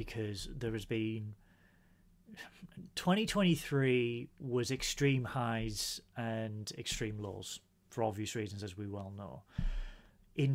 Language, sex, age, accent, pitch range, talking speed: English, male, 30-49, British, 105-150 Hz, 110 wpm